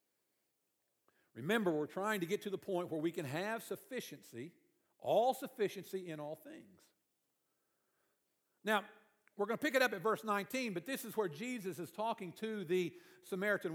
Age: 50-69